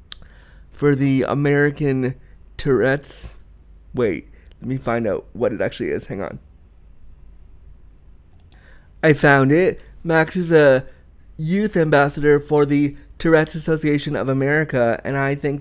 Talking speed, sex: 125 wpm, male